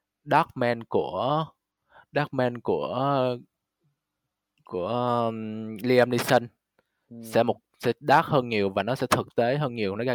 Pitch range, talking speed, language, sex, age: 105-130 Hz, 130 wpm, Vietnamese, male, 20-39